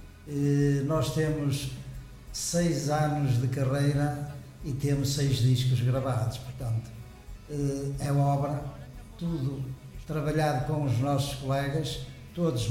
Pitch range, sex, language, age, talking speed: 130-145 Hz, male, Portuguese, 60-79, 100 wpm